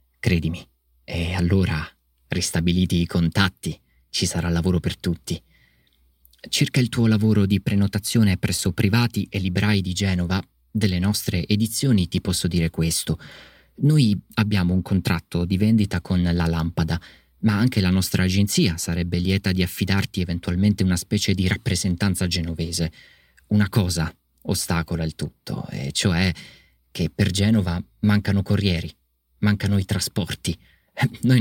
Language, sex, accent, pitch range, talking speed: Italian, male, native, 85-105 Hz, 135 wpm